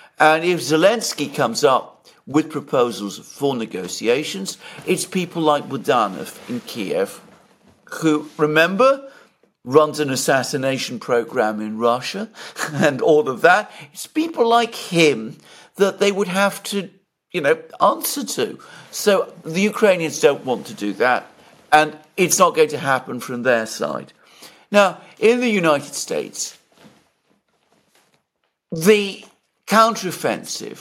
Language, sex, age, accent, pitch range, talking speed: English, male, 50-69, British, 120-180 Hz, 125 wpm